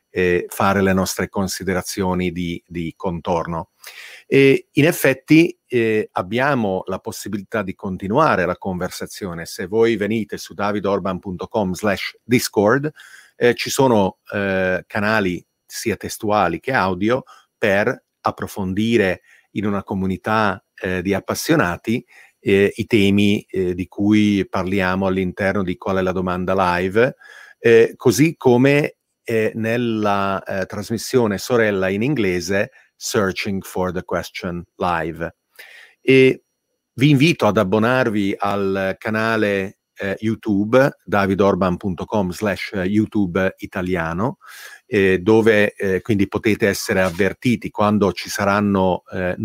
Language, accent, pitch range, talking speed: Italian, native, 95-110 Hz, 115 wpm